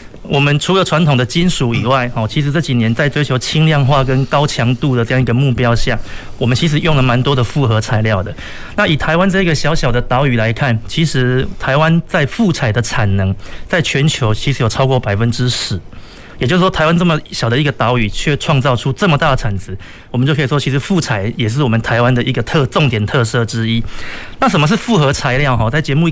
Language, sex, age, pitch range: Chinese, male, 30-49, 120-165 Hz